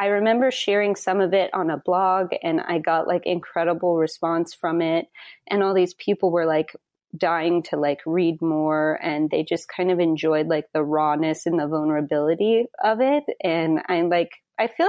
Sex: female